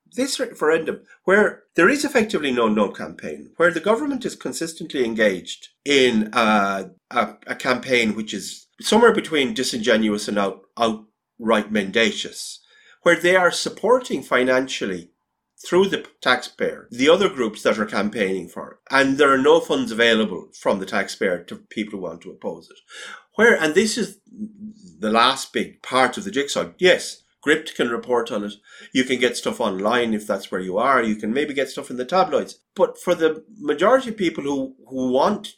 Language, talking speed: English, 170 wpm